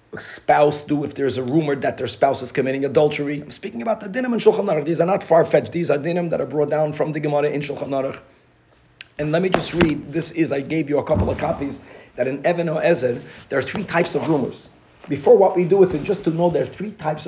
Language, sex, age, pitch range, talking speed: English, male, 40-59, 145-190 Hz, 265 wpm